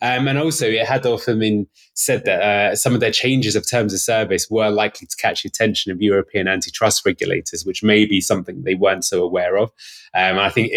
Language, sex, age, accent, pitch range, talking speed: English, male, 20-39, British, 100-125 Hz, 235 wpm